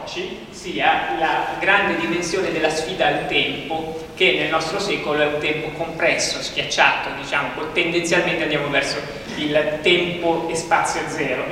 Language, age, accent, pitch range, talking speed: Italian, 30-49, native, 150-175 Hz, 135 wpm